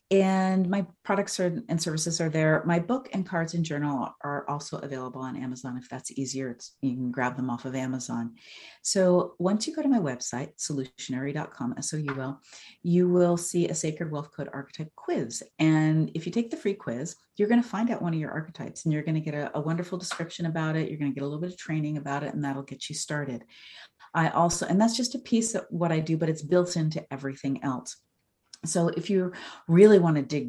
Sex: female